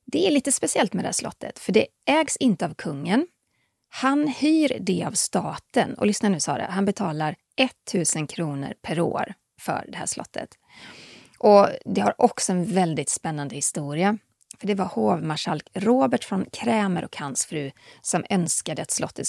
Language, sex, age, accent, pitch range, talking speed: English, female, 30-49, Swedish, 160-245 Hz, 170 wpm